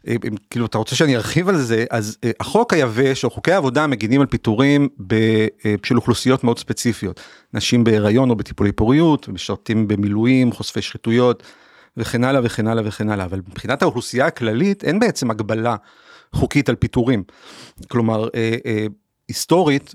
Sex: male